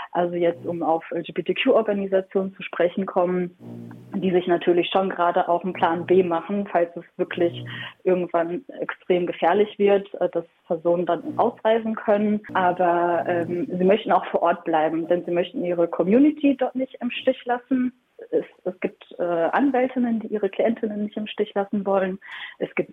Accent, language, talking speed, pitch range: German, German, 160 wpm, 175-205 Hz